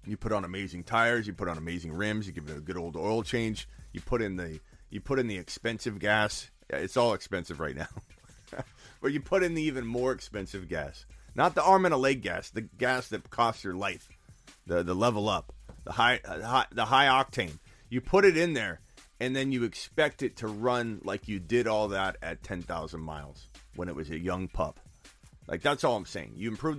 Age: 30-49